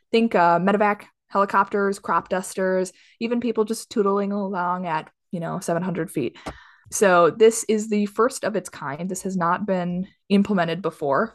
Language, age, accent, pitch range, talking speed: English, 20-39, American, 180-215 Hz, 160 wpm